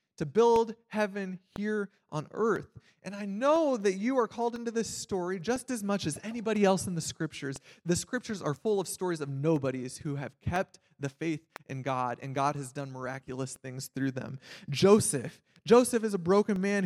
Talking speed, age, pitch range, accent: 190 wpm, 20-39, 170-235 Hz, American